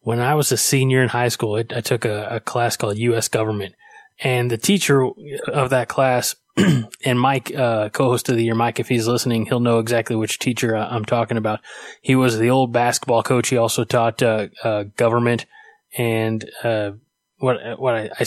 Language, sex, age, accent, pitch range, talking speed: English, male, 20-39, American, 115-130 Hz, 195 wpm